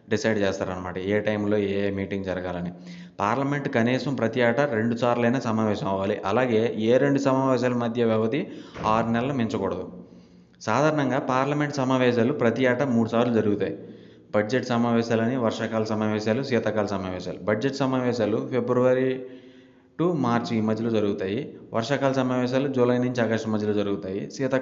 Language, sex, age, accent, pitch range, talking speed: English, male, 20-39, Indian, 110-130 Hz, 100 wpm